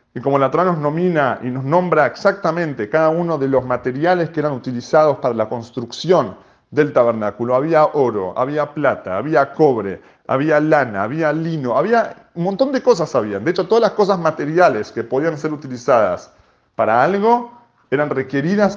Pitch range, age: 130-185 Hz, 40-59